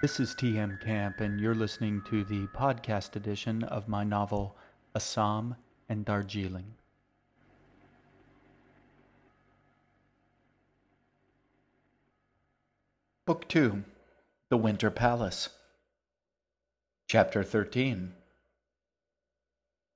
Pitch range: 100-115 Hz